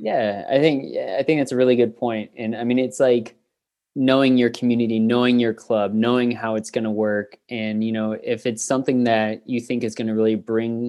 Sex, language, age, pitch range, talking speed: male, English, 20-39, 110-125 Hz, 230 wpm